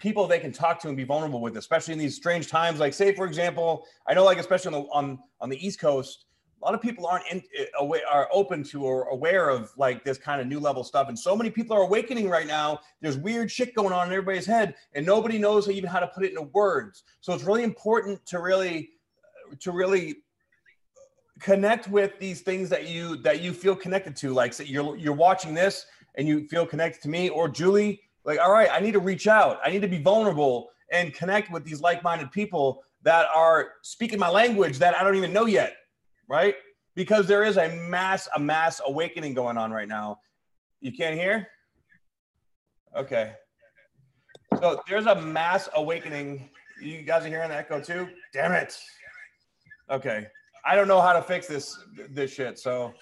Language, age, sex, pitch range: English, 30-49, male, 150-200 Hz